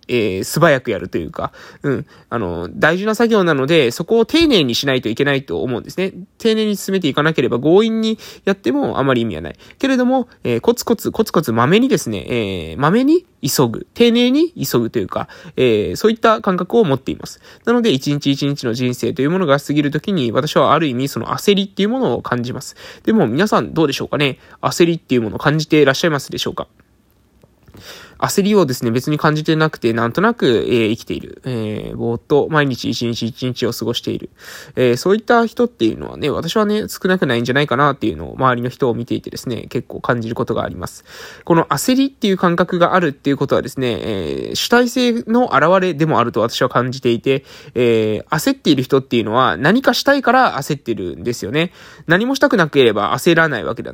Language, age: Japanese, 20-39